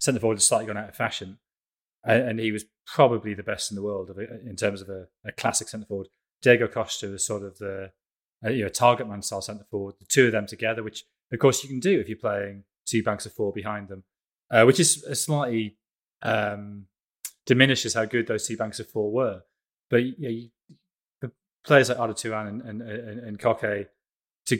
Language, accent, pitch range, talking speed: English, British, 105-125 Hz, 225 wpm